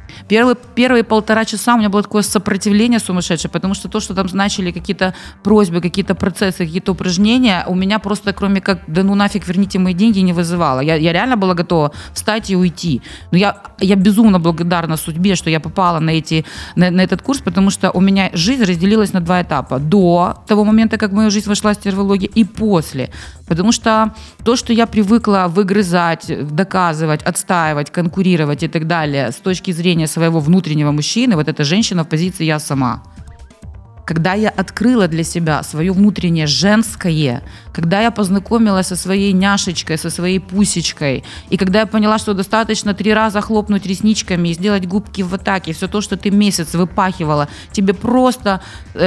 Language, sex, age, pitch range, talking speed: Ukrainian, female, 30-49, 170-210 Hz, 175 wpm